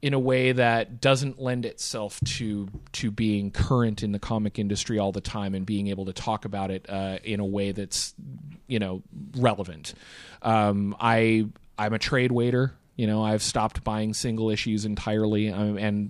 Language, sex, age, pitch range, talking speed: English, male, 30-49, 100-120 Hz, 180 wpm